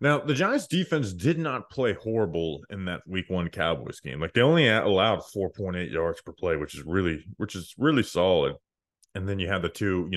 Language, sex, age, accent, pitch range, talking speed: English, male, 20-39, American, 85-115 Hz, 210 wpm